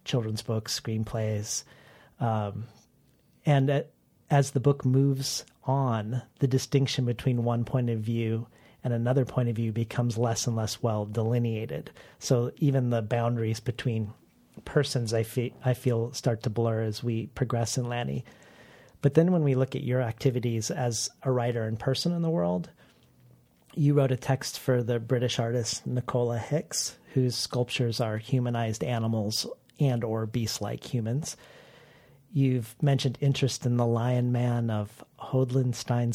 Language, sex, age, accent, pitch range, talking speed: English, male, 40-59, American, 115-130 Hz, 150 wpm